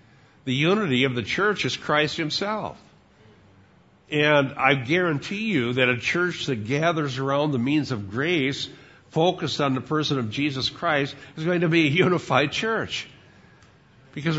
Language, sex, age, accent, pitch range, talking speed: English, male, 60-79, American, 115-145 Hz, 155 wpm